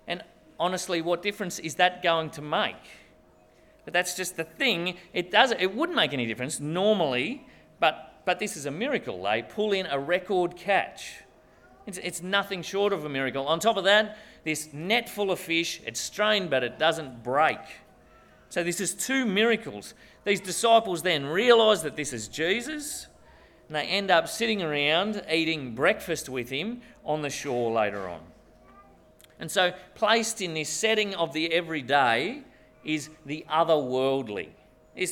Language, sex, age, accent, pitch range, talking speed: English, male, 40-59, Australian, 150-200 Hz, 165 wpm